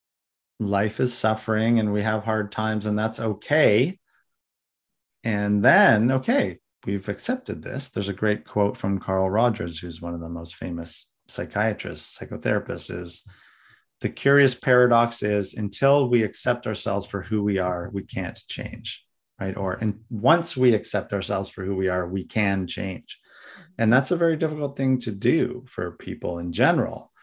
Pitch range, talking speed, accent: 95-120 Hz, 165 wpm, American